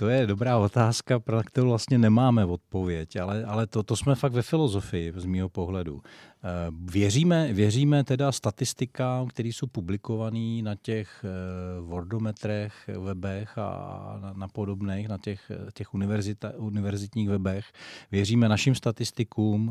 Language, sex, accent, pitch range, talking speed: Czech, male, native, 100-120 Hz, 130 wpm